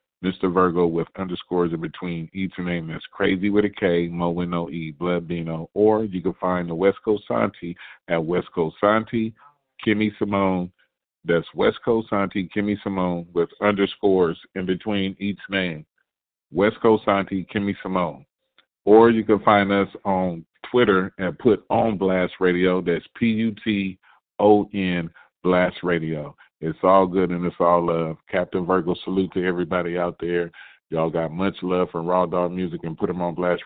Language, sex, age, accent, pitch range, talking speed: English, male, 40-59, American, 85-100 Hz, 170 wpm